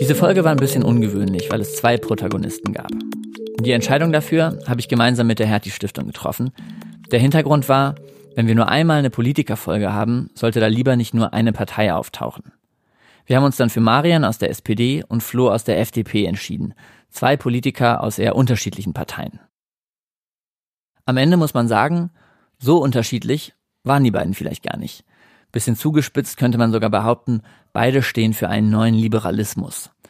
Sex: male